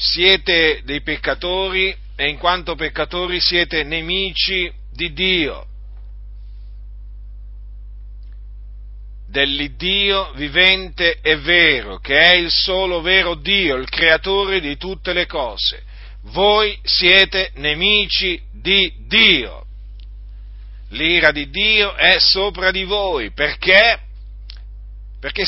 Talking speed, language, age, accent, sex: 95 wpm, Italian, 50-69, native, male